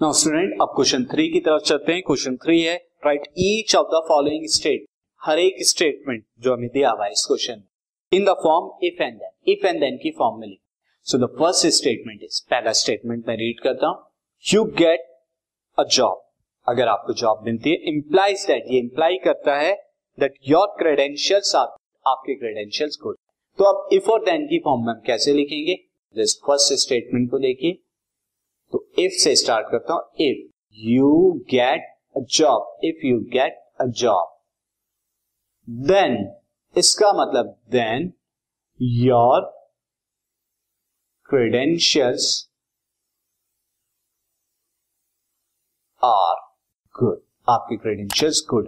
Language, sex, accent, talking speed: Hindi, male, native, 90 wpm